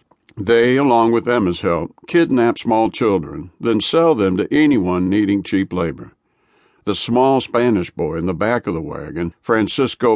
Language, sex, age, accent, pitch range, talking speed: English, male, 60-79, American, 95-135 Hz, 160 wpm